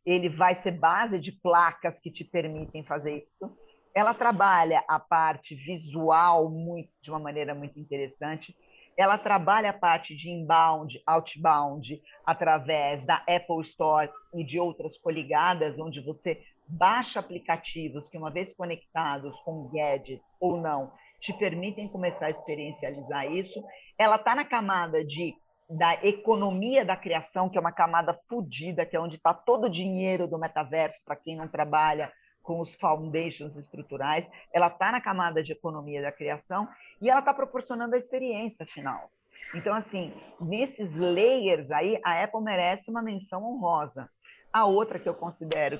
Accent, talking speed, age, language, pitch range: Brazilian, 155 wpm, 50-69, Portuguese, 155-190 Hz